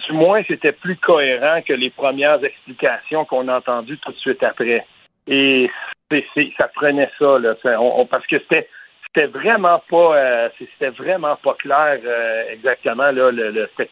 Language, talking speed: French, 185 wpm